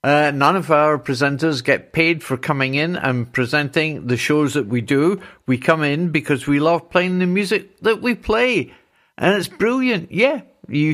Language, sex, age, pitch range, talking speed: English, male, 60-79, 150-215 Hz, 185 wpm